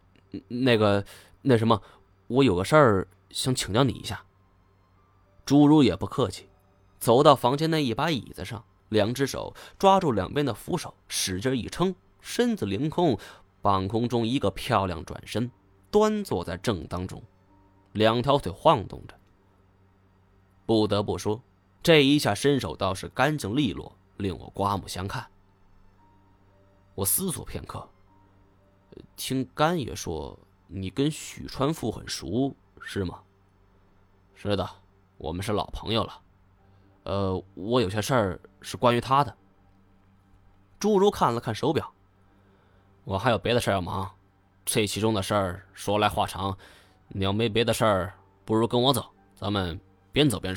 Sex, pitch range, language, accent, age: male, 95-120 Hz, Chinese, native, 20-39